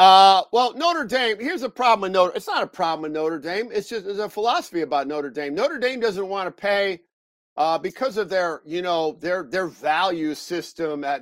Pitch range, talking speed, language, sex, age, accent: 150-200 Hz, 210 wpm, English, male, 50-69, American